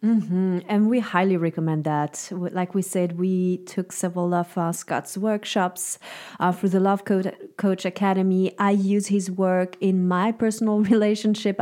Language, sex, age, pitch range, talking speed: English, female, 30-49, 185-225 Hz, 160 wpm